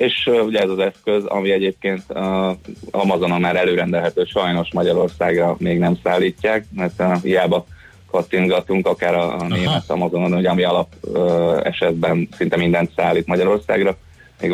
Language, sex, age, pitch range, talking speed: Hungarian, male, 30-49, 85-95 Hz, 140 wpm